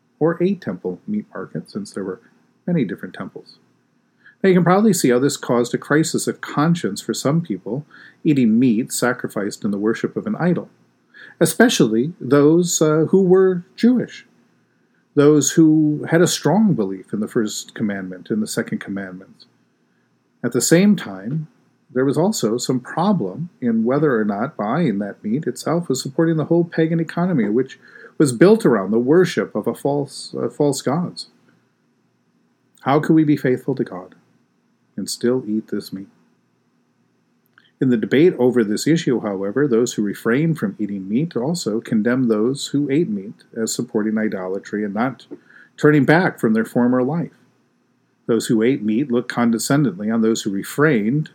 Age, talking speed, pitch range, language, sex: 50-69, 165 wpm, 115-165 Hz, English, male